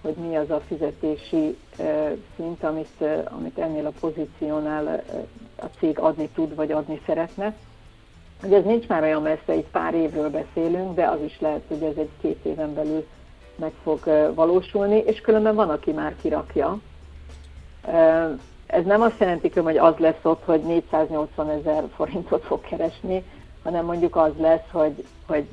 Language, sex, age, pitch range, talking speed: Hungarian, female, 60-79, 155-170 Hz, 155 wpm